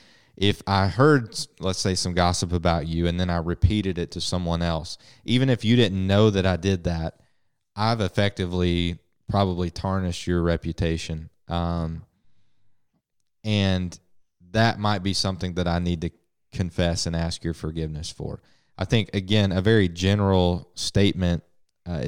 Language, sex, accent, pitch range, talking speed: English, male, American, 85-100 Hz, 150 wpm